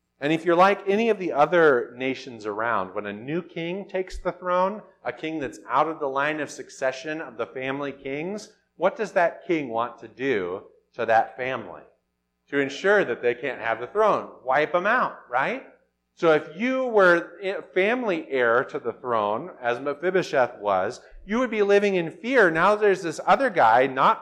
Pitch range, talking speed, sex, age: 120-185 Hz, 190 wpm, male, 40-59